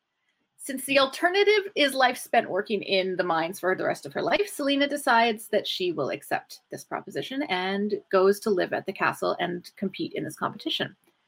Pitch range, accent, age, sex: 195-270 Hz, American, 30-49, female